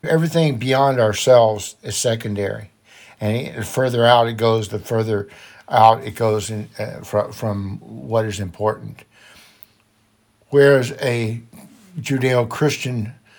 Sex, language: male, English